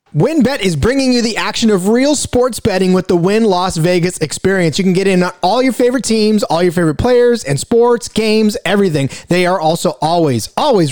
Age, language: 30-49, English